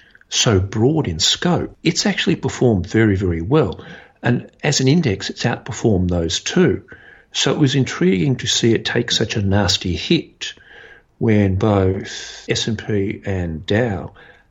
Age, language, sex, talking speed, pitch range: 50-69, English, male, 145 wpm, 95-130 Hz